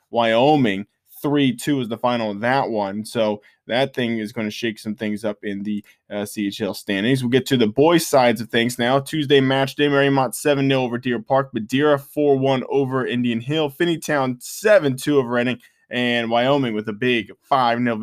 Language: English